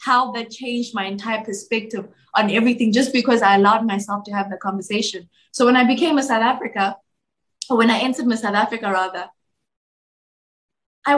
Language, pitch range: English, 215-255 Hz